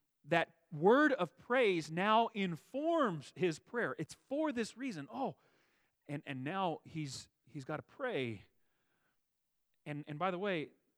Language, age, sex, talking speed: English, 40-59, male, 140 wpm